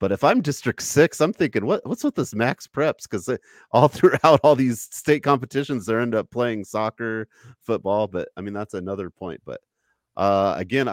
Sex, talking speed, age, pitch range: male, 190 wpm, 30-49, 90-110 Hz